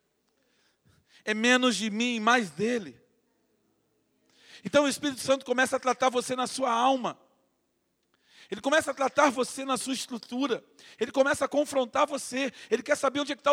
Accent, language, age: Brazilian, Portuguese, 40-59